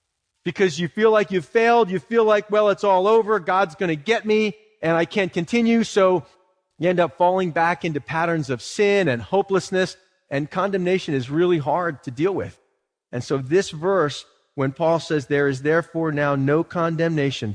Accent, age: American, 40-59